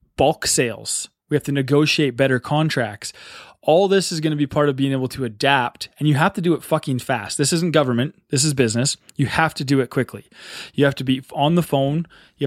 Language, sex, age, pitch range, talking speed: English, male, 20-39, 130-160 Hz, 230 wpm